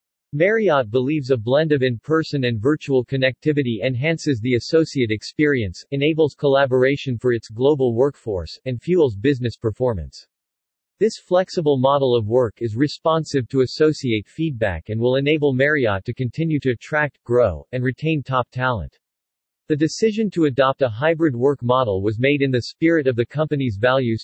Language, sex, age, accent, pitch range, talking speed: English, male, 40-59, American, 120-150 Hz, 155 wpm